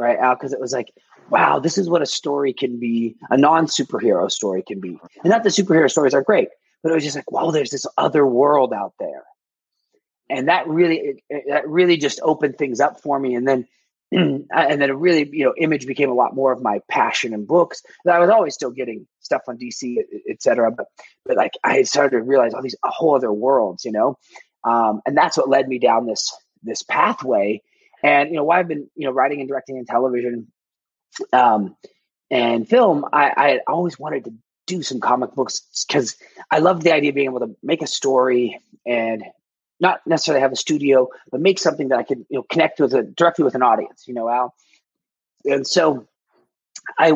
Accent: American